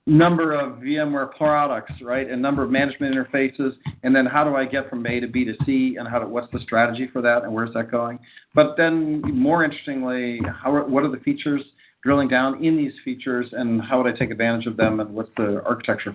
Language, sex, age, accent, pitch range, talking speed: English, male, 50-69, American, 130-165 Hz, 225 wpm